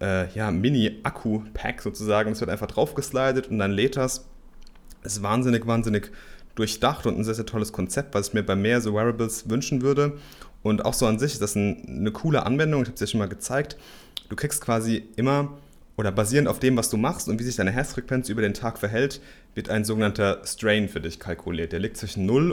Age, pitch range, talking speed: 30-49, 100-125 Hz, 205 wpm